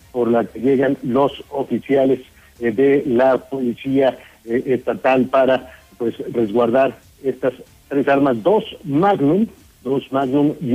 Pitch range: 125-145 Hz